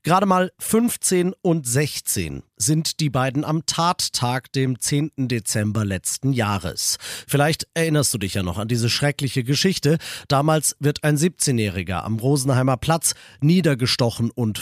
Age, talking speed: 40-59, 140 wpm